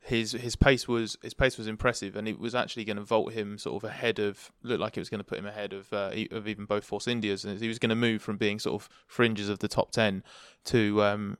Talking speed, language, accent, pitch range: 280 wpm, English, British, 105-120 Hz